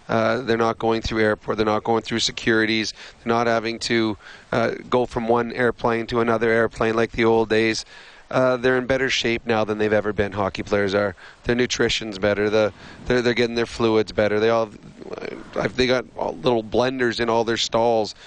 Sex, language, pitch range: male, English, 115-125 Hz